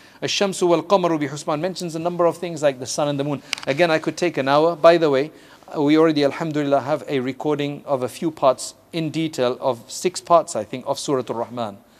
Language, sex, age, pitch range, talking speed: English, male, 40-59, 125-150 Hz, 220 wpm